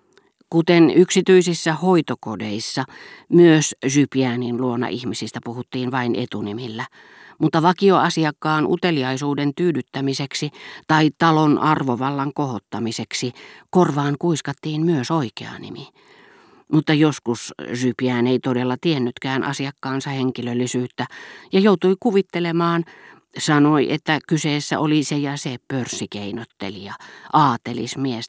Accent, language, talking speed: native, Finnish, 90 wpm